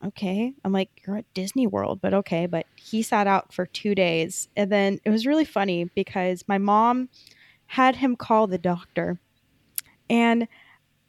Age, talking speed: 20-39, 170 wpm